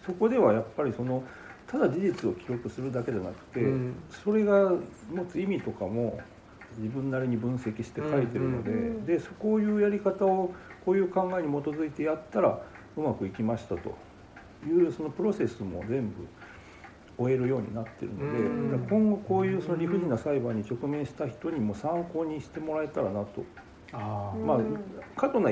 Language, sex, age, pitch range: Japanese, male, 60-79, 110-170 Hz